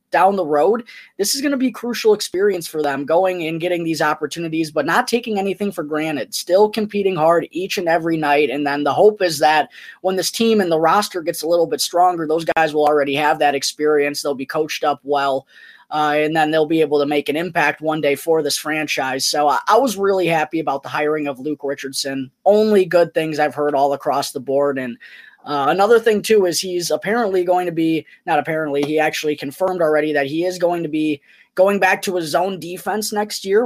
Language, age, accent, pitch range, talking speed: English, 20-39, American, 150-185 Hz, 225 wpm